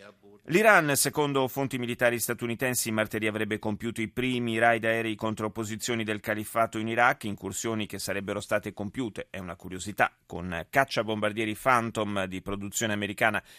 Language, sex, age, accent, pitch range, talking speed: Italian, male, 30-49, native, 100-125 Hz, 145 wpm